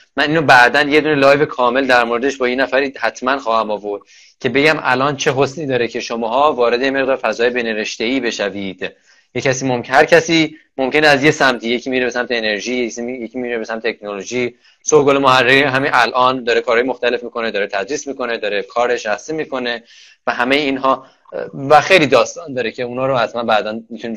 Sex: male